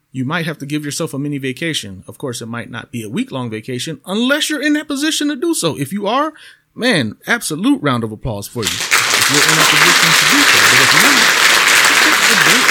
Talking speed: 235 wpm